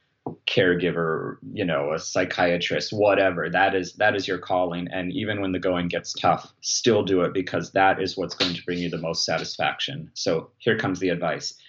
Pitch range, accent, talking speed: 90-120 Hz, American, 195 wpm